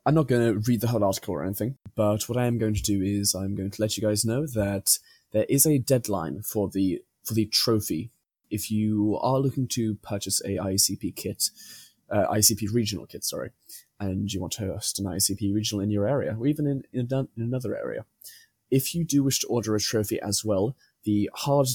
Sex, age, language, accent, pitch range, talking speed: male, 20-39, English, British, 100-120 Hz, 220 wpm